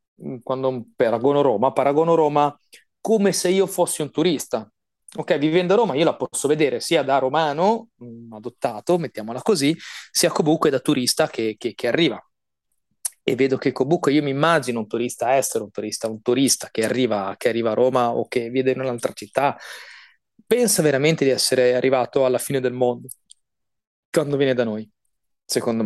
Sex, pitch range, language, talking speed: male, 125-165 Hz, Italian, 170 wpm